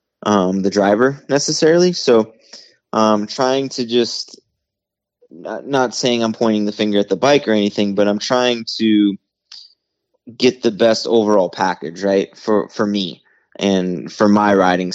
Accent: American